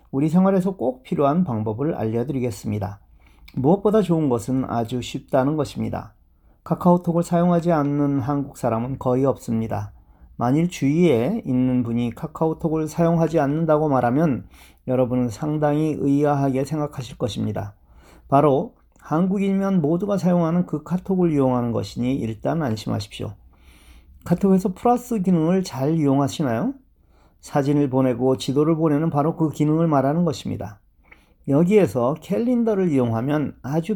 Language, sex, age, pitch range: Korean, male, 40-59, 115-170 Hz